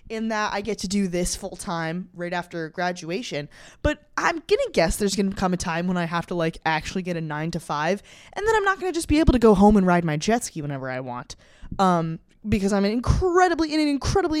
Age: 20-39